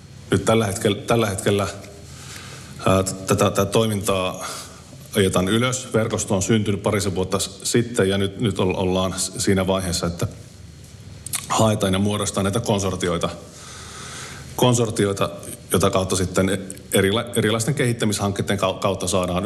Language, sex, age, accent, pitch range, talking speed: Finnish, male, 30-49, native, 95-105 Hz, 115 wpm